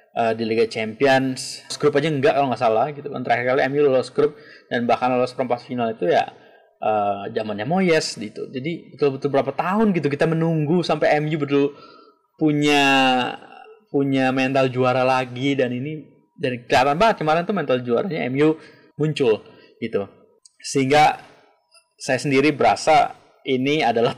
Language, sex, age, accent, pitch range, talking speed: Indonesian, male, 20-39, native, 125-155 Hz, 150 wpm